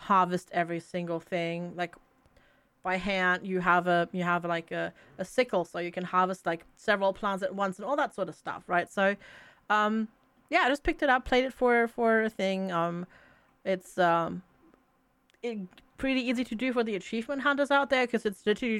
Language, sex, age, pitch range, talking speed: English, female, 30-49, 185-245 Hz, 200 wpm